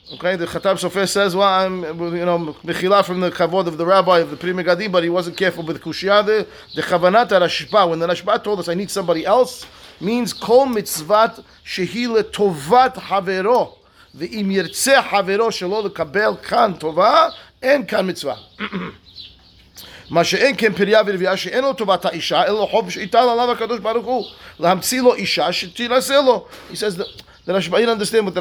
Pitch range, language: 170-220 Hz, English